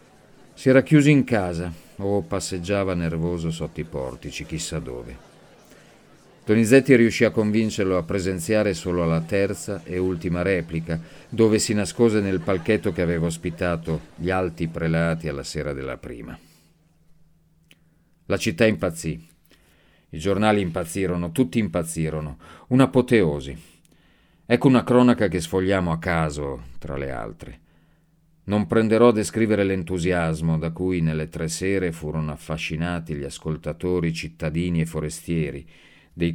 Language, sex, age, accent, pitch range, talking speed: Italian, male, 40-59, native, 80-105 Hz, 125 wpm